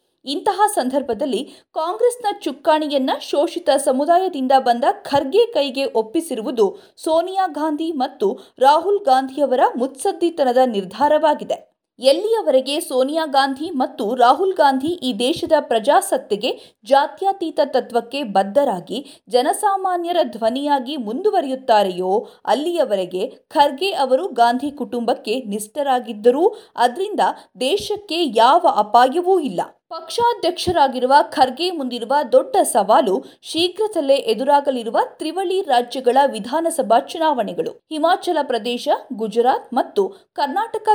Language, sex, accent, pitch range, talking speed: Kannada, female, native, 255-345 Hz, 85 wpm